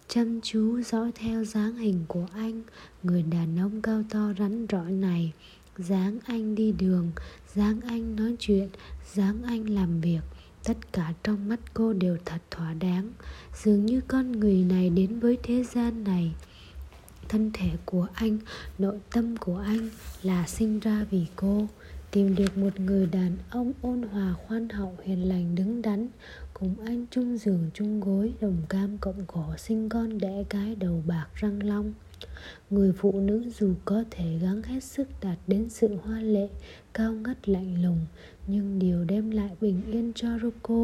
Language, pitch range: Japanese, 185-225 Hz